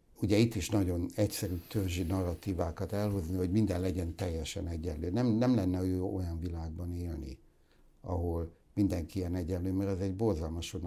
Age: 60-79